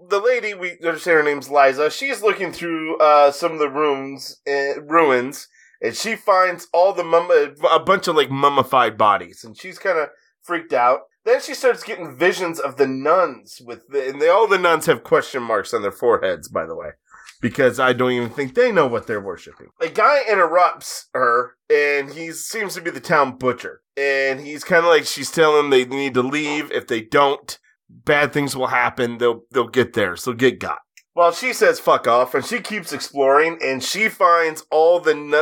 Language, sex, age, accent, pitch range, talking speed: English, male, 20-39, American, 135-190 Hz, 205 wpm